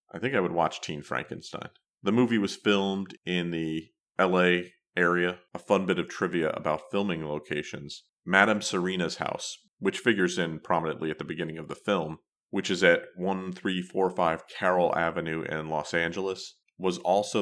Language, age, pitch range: English, 30-49, 80-95 Hz